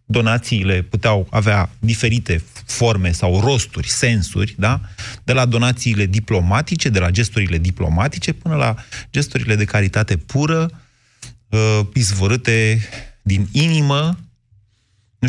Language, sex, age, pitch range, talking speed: Romanian, male, 30-49, 95-120 Hz, 105 wpm